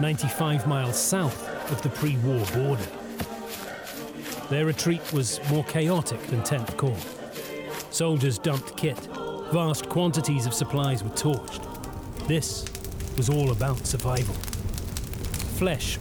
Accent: British